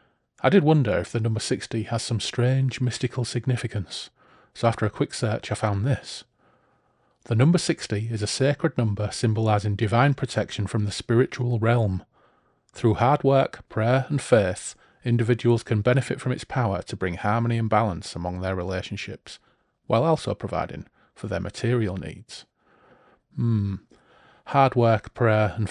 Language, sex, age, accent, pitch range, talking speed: English, male, 30-49, British, 105-125 Hz, 155 wpm